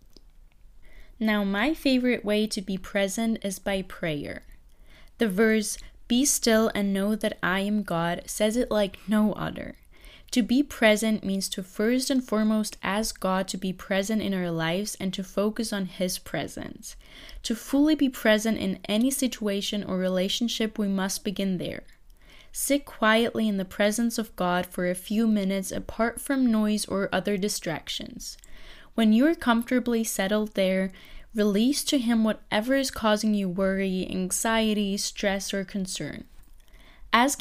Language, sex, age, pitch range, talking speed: English, female, 20-39, 195-235 Hz, 155 wpm